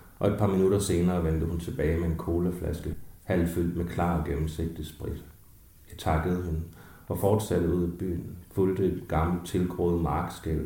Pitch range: 80-90 Hz